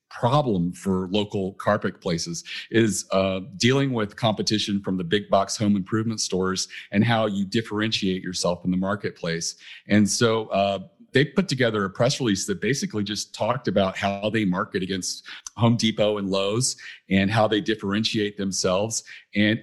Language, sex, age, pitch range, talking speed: English, male, 40-59, 95-110 Hz, 160 wpm